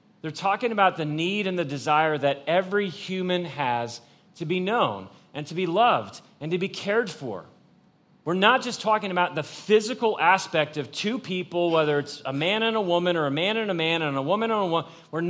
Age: 30-49